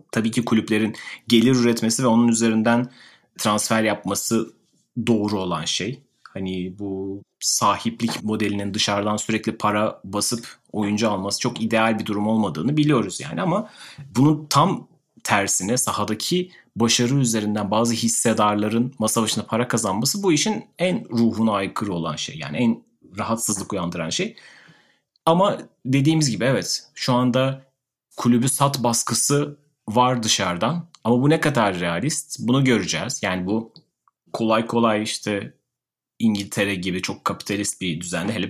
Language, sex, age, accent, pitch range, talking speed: Turkish, male, 30-49, native, 105-130 Hz, 130 wpm